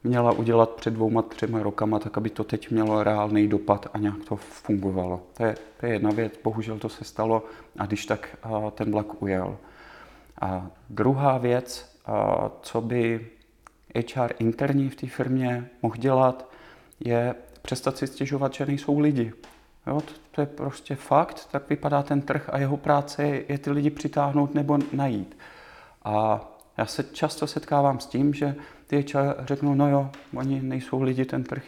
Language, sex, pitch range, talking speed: Czech, male, 115-140 Hz, 165 wpm